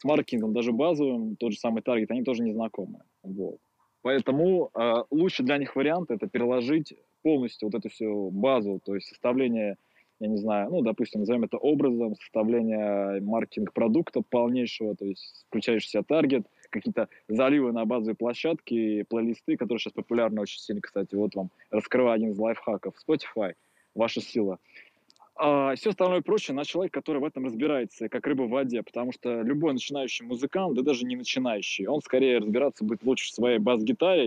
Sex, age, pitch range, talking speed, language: male, 20-39, 110-145 Hz, 170 wpm, Russian